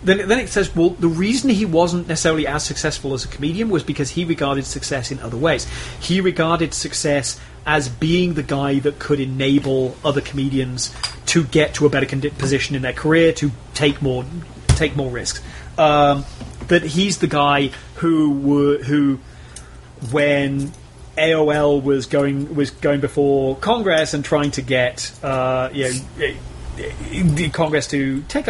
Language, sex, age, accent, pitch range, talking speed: English, male, 30-49, British, 135-165 Hz, 160 wpm